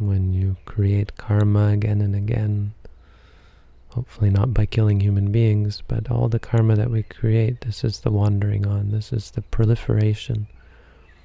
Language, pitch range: English, 80-110 Hz